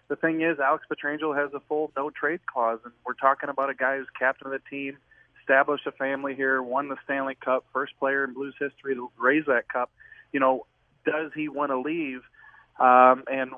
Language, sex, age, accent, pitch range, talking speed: English, male, 30-49, American, 125-145 Hz, 205 wpm